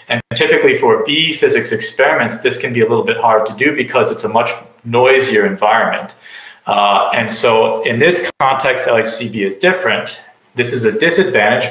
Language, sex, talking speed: English, male, 175 wpm